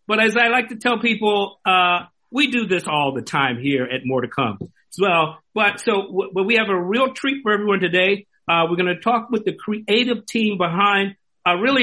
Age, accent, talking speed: 50-69, American, 230 wpm